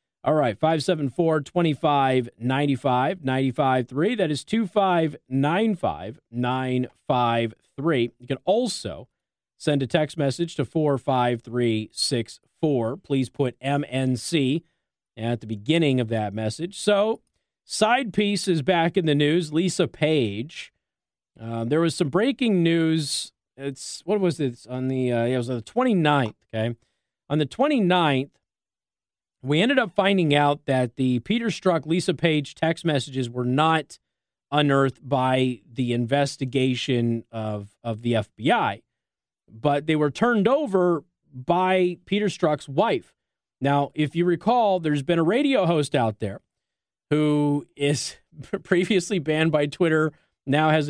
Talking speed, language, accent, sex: 125 wpm, English, American, male